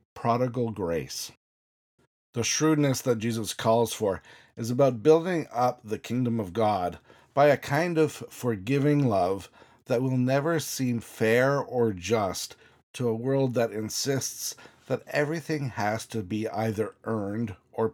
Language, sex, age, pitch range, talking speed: English, male, 50-69, 110-135 Hz, 140 wpm